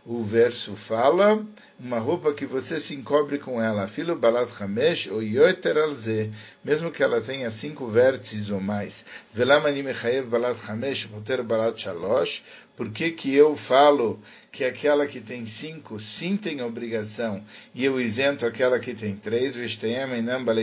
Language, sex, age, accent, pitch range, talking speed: Portuguese, male, 60-79, Brazilian, 110-145 Hz, 125 wpm